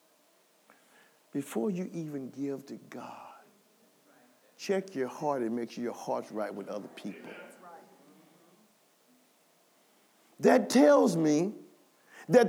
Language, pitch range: English, 225-285 Hz